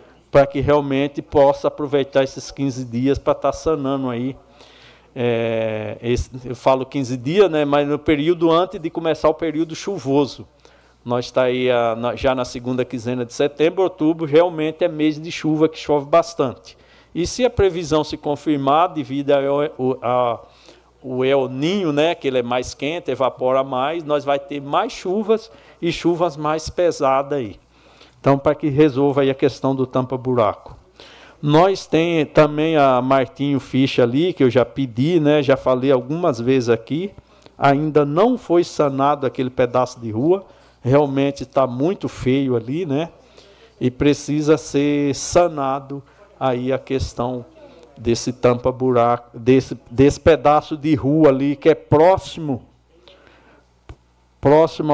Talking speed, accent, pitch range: 150 wpm, Brazilian, 130-155 Hz